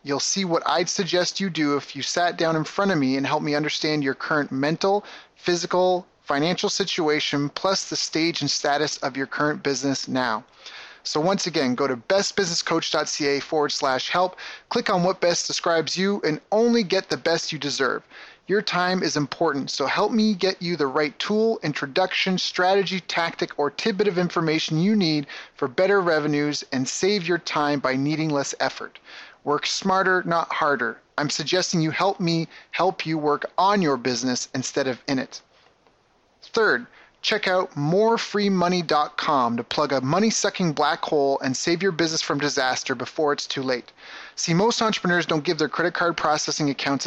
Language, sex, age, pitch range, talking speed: English, male, 30-49, 145-185 Hz, 175 wpm